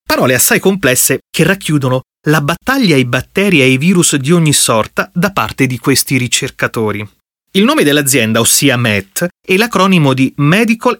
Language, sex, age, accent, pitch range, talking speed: Italian, male, 30-49, native, 130-185 Hz, 155 wpm